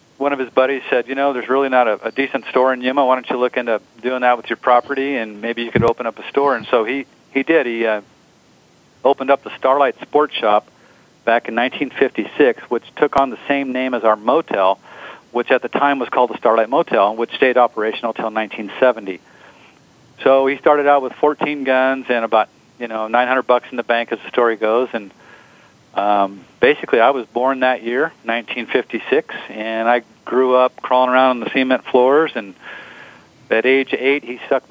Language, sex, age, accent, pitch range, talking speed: English, male, 40-59, American, 115-135 Hz, 205 wpm